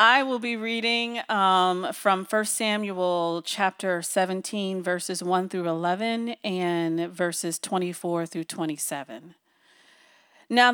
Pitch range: 175-245 Hz